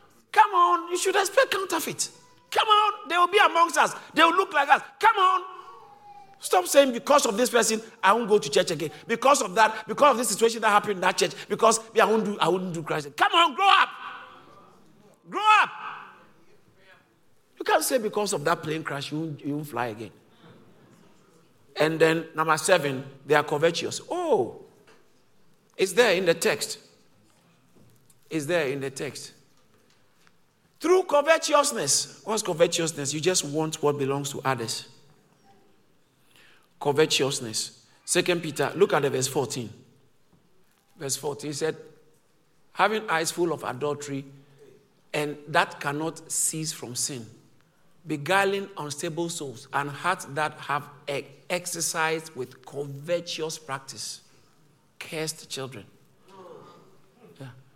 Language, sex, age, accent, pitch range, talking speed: English, male, 50-69, Nigerian, 145-225 Hz, 140 wpm